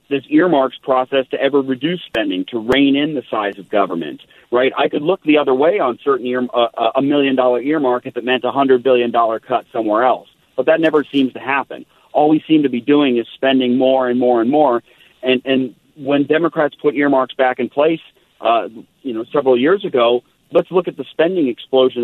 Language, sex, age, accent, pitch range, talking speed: English, male, 40-59, American, 120-150 Hz, 210 wpm